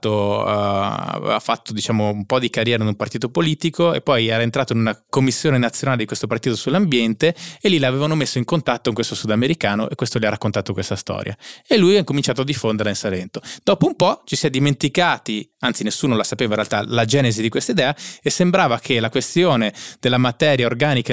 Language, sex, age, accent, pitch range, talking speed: Italian, male, 20-39, native, 110-135 Hz, 210 wpm